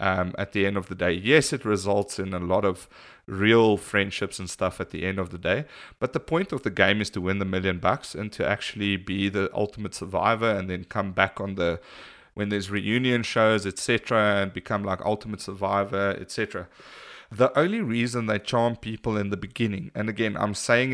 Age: 30-49